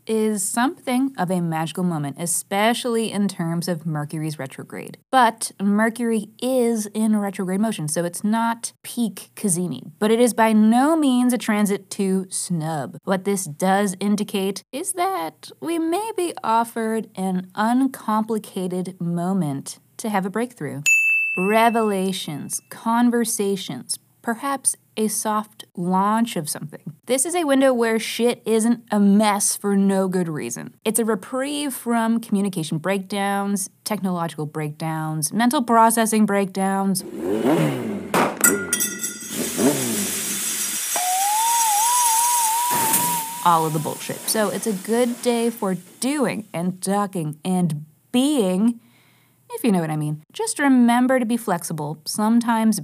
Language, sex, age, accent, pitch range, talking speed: English, female, 20-39, American, 180-235 Hz, 125 wpm